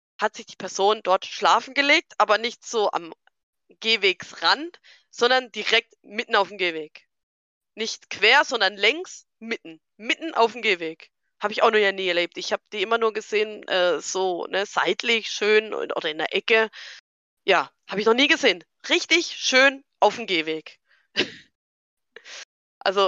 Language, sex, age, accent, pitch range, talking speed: German, female, 20-39, German, 185-245 Hz, 160 wpm